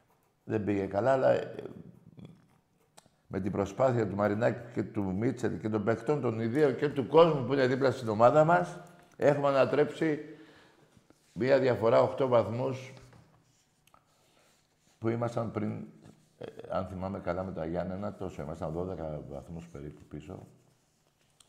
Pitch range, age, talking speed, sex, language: 95-135 Hz, 60-79, 130 wpm, male, Greek